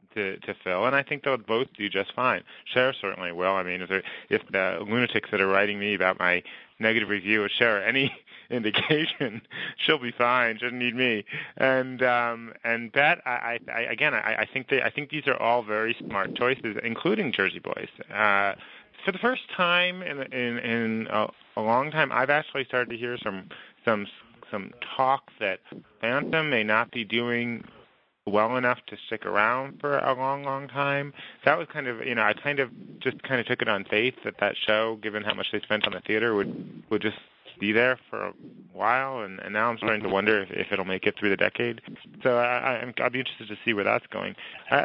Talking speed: 210 wpm